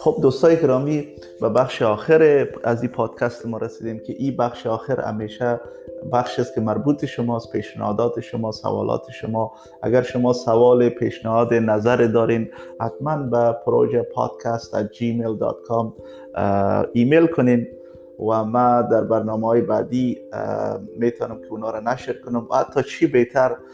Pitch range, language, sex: 110-125 Hz, Persian, male